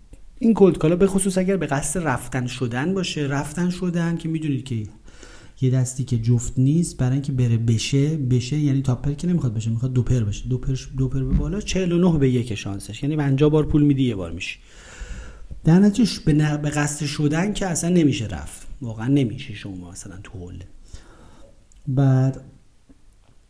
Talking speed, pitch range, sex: 175 wpm, 120-155 Hz, male